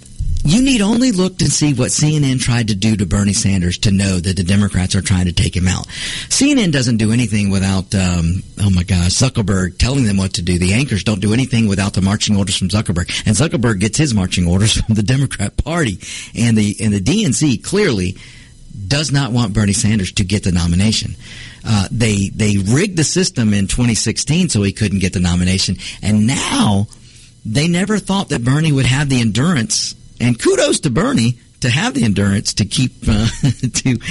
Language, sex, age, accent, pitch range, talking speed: English, male, 50-69, American, 105-140 Hz, 200 wpm